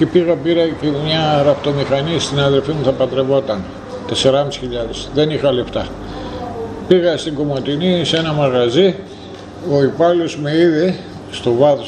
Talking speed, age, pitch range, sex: 135 wpm, 60-79, 120-160 Hz, male